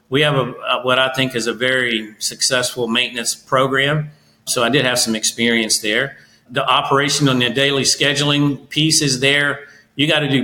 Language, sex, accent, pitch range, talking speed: English, male, American, 120-150 Hz, 180 wpm